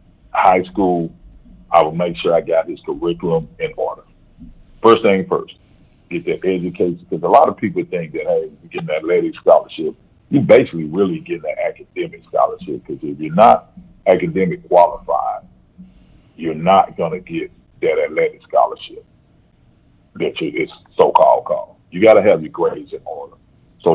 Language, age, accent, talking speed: English, 40-59, American, 165 wpm